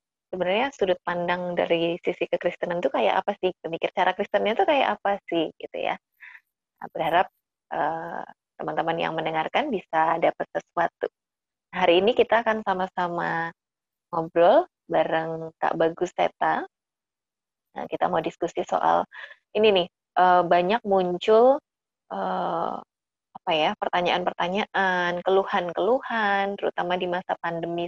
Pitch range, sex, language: 175-230 Hz, female, Indonesian